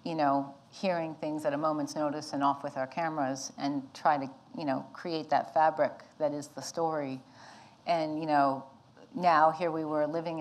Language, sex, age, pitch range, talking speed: English, female, 40-59, 145-170 Hz, 190 wpm